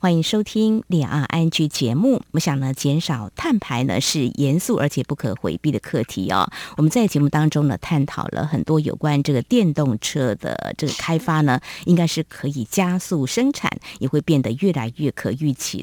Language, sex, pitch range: Chinese, female, 140-190 Hz